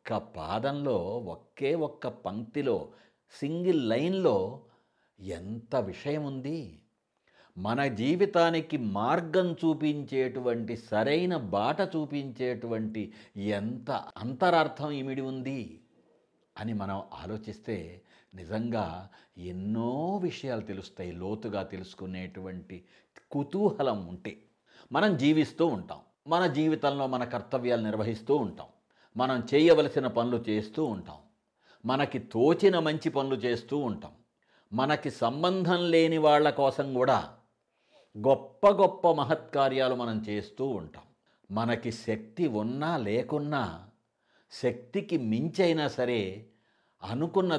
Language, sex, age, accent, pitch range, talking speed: Telugu, male, 60-79, native, 110-150 Hz, 90 wpm